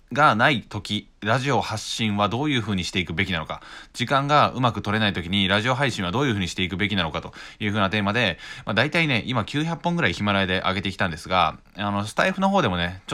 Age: 20-39